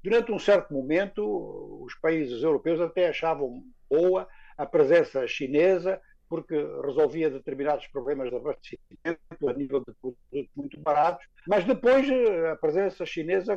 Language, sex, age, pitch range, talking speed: Portuguese, male, 60-79, 150-210 Hz, 135 wpm